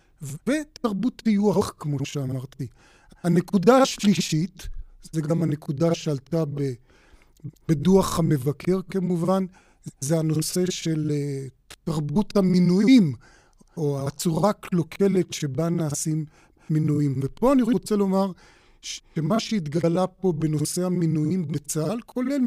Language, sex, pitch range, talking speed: Hebrew, male, 160-205 Hz, 95 wpm